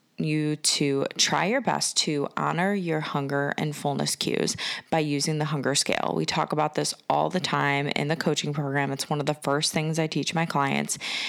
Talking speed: 200 wpm